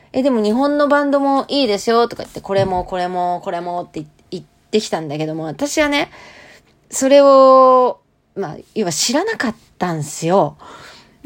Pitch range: 180-290 Hz